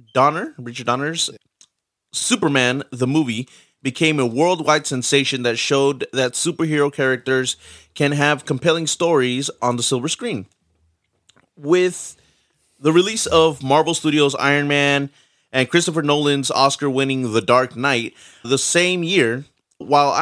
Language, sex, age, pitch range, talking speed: English, male, 30-49, 130-155 Hz, 130 wpm